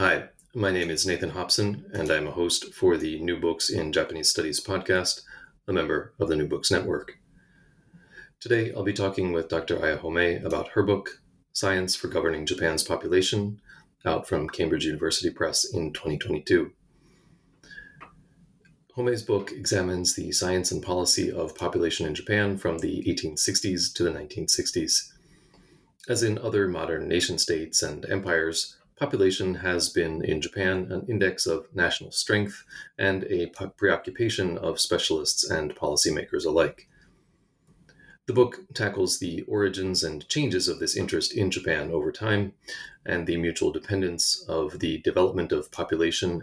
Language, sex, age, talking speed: English, male, 30-49, 145 wpm